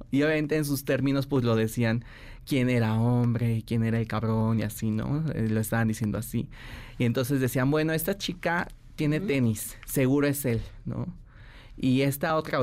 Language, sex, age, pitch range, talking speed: Spanish, male, 20-39, 115-140 Hz, 175 wpm